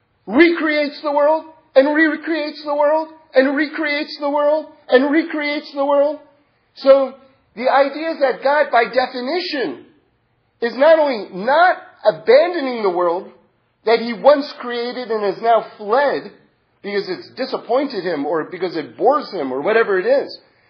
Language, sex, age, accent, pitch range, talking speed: English, male, 40-59, American, 225-320 Hz, 150 wpm